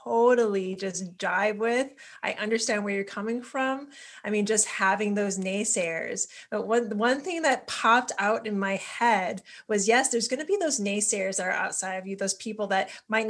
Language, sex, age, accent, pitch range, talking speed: English, female, 20-39, American, 195-245 Hz, 195 wpm